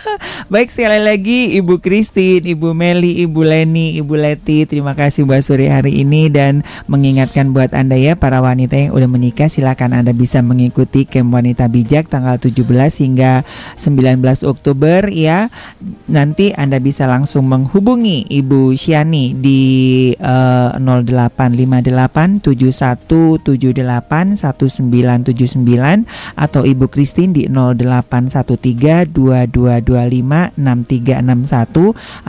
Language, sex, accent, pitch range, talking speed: Indonesian, male, native, 125-170 Hz, 100 wpm